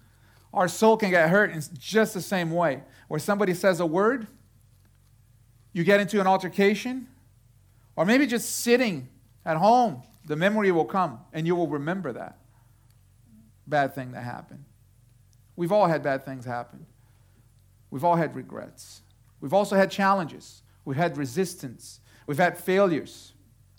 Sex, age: male, 40-59